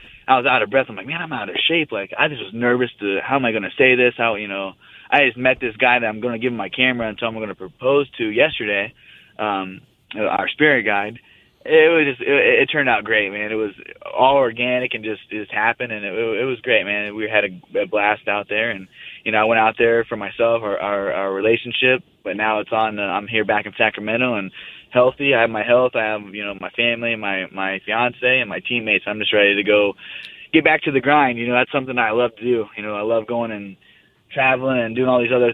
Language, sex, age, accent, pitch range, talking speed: English, male, 20-39, American, 105-125 Hz, 265 wpm